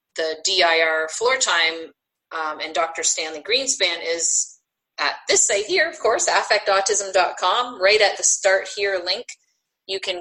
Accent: American